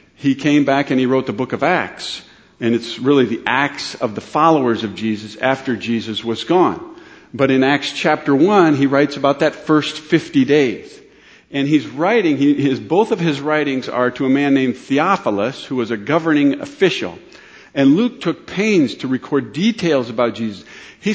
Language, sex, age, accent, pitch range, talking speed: English, male, 50-69, American, 130-170 Hz, 185 wpm